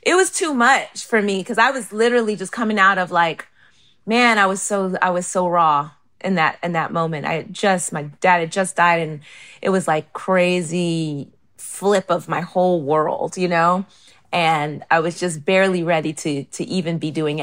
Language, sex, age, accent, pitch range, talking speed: English, female, 30-49, American, 155-195 Hz, 200 wpm